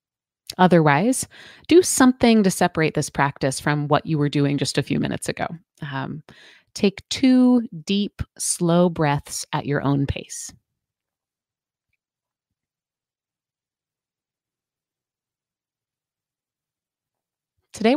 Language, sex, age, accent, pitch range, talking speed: English, female, 30-49, American, 150-195 Hz, 95 wpm